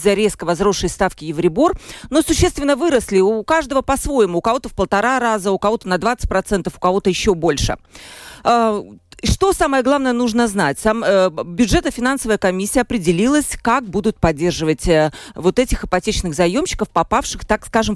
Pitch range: 180-235 Hz